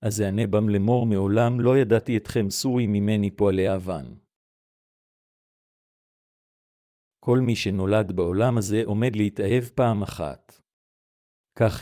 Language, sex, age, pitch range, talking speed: Hebrew, male, 50-69, 100-125 Hz, 110 wpm